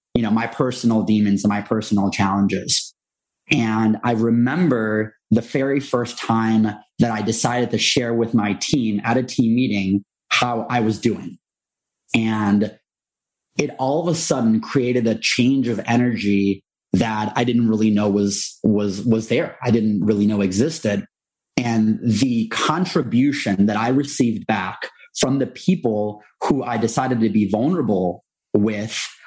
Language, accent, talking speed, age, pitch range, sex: English, American, 150 wpm, 30-49, 105-120 Hz, male